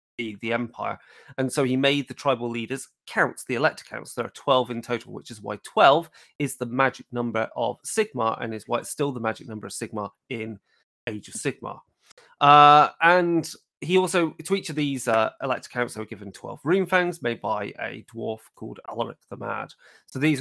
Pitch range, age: 120-155 Hz, 30-49